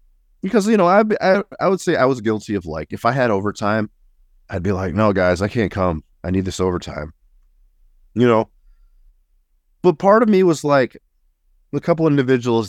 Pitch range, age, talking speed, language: 75-115 Hz, 30-49, 190 wpm, English